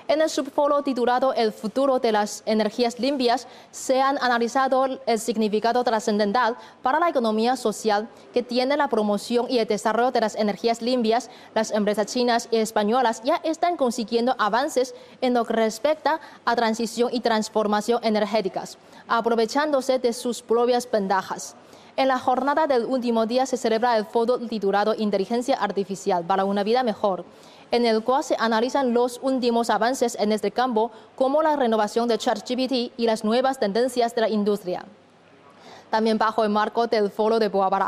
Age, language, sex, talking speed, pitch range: 20-39, Spanish, female, 165 wpm, 215-250 Hz